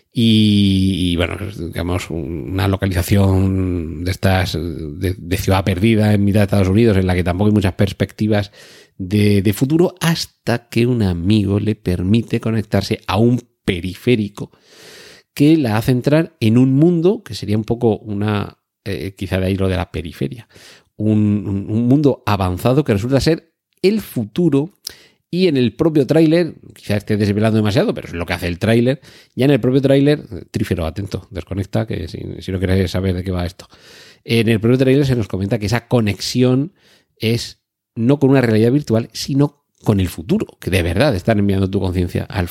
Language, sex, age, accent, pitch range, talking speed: Spanish, male, 40-59, Spanish, 95-120 Hz, 180 wpm